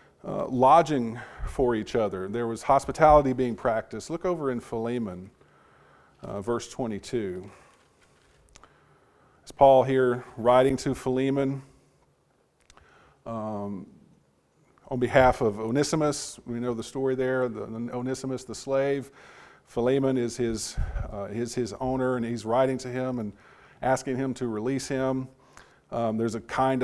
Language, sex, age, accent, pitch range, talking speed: English, male, 40-59, American, 115-135 Hz, 135 wpm